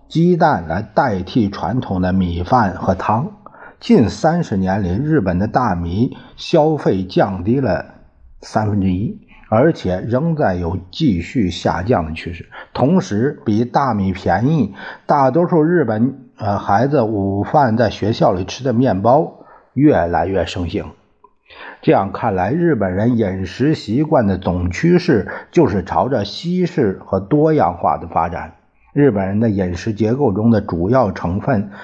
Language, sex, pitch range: Chinese, male, 95-140 Hz